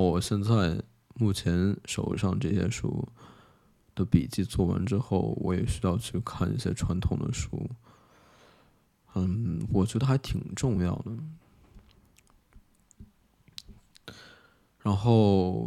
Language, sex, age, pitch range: Chinese, male, 20-39, 90-115 Hz